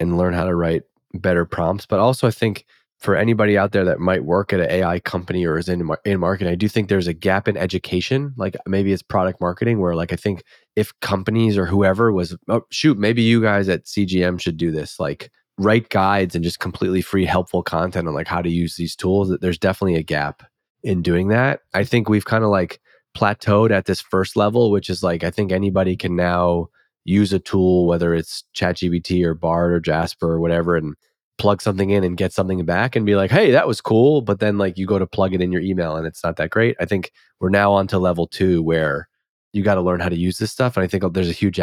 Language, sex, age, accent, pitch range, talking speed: English, male, 20-39, American, 85-105 Hz, 240 wpm